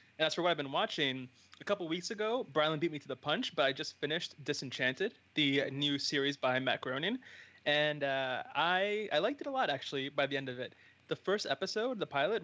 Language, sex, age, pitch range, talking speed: English, male, 20-39, 135-160 Hz, 225 wpm